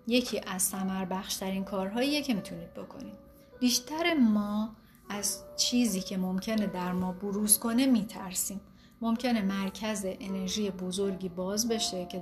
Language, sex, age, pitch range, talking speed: Persian, female, 30-49, 190-220 Hz, 130 wpm